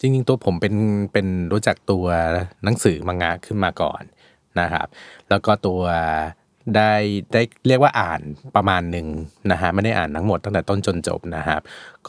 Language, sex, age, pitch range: Thai, male, 20-39, 85-110 Hz